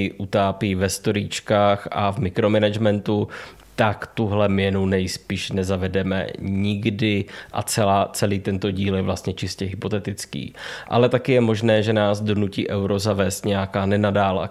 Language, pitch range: Czech, 100-110 Hz